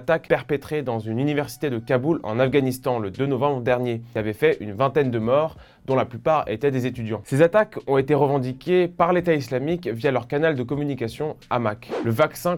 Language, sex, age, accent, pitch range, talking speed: French, male, 20-39, French, 125-165 Hz, 195 wpm